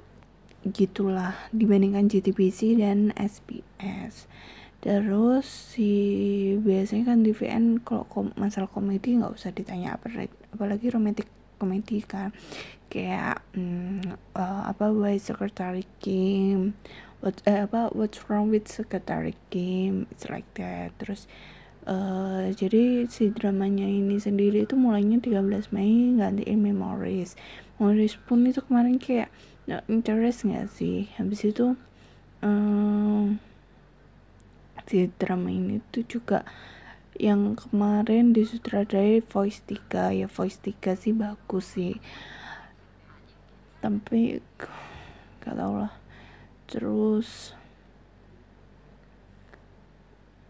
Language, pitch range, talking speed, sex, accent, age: English, 195-220 Hz, 100 wpm, female, Indonesian, 20-39